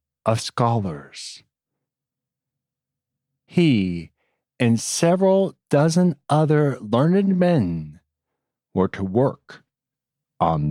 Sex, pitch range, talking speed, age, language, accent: male, 105-160 Hz, 75 wpm, 40-59, English, American